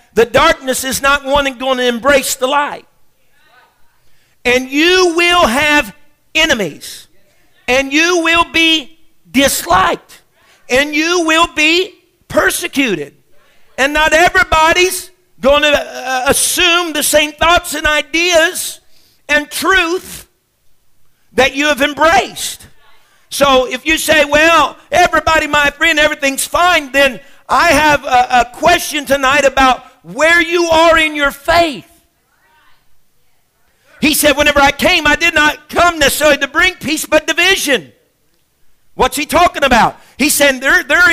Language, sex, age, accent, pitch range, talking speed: English, male, 50-69, American, 275-330 Hz, 130 wpm